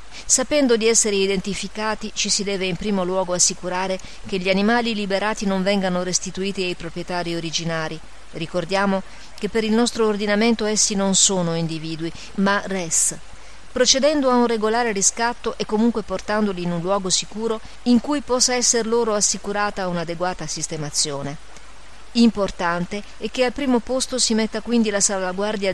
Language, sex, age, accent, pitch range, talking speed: Italian, female, 40-59, native, 170-215 Hz, 150 wpm